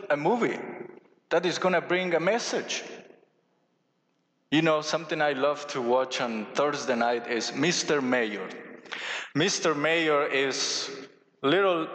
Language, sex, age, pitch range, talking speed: English, male, 20-39, 135-185 Hz, 130 wpm